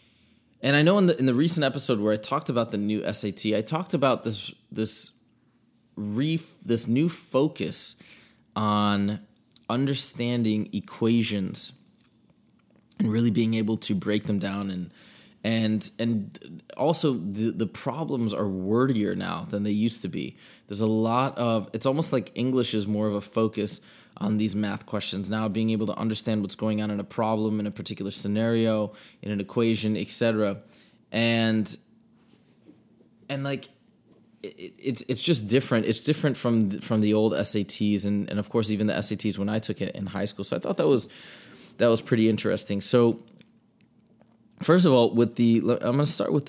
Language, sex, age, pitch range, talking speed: English, male, 20-39, 105-120 Hz, 175 wpm